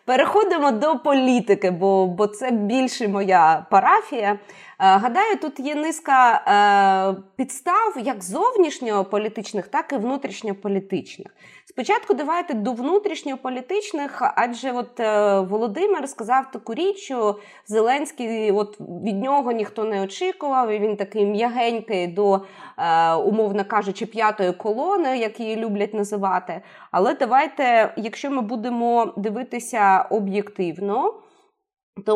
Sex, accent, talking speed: female, native, 120 wpm